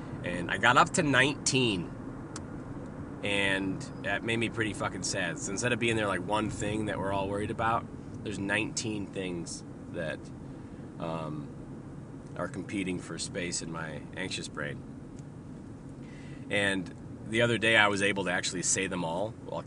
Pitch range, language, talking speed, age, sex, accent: 95-130 Hz, English, 160 wpm, 30-49, male, American